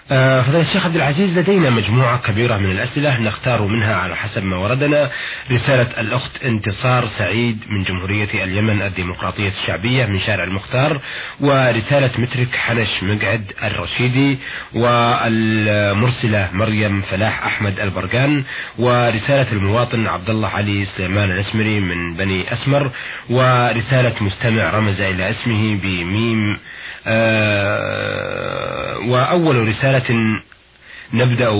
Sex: male